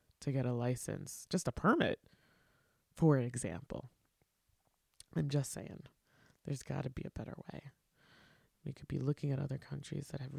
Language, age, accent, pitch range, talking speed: English, 20-39, American, 125-155 Hz, 155 wpm